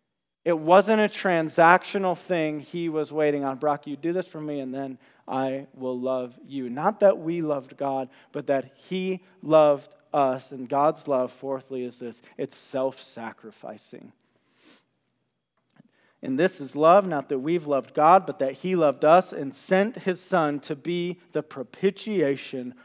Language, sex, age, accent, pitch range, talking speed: English, male, 40-59, American, 130-180 Hz, 160 wpm